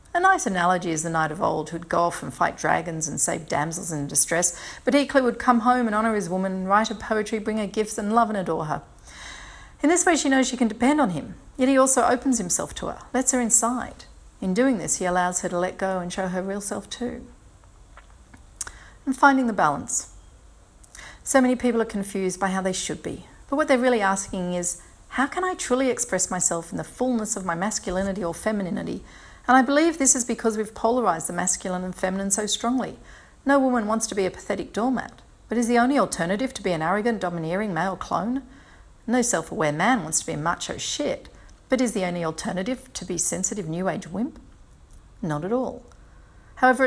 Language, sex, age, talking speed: English, female, 40-59, 215 wpm